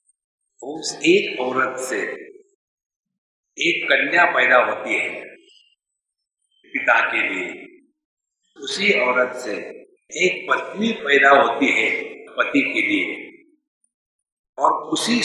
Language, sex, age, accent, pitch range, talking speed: English, male, 60-79, Indian, 275-445 Hz, 100 wpm